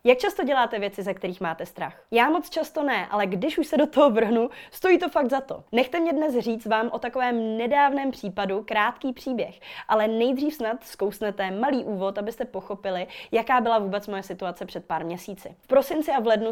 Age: 20-39